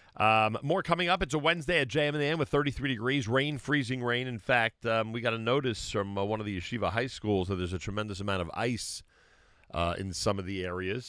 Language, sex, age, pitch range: English, male, 40-59, 85-115 Hz